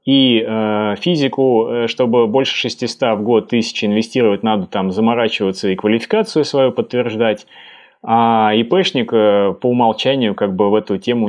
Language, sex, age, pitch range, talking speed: Russian, male, 20-39, 105-125 Hz, 140 wpm